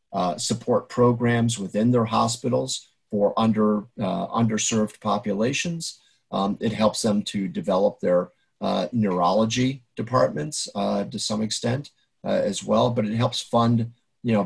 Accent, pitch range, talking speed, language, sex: American, 105-120 Hz, 140 wpm, English, male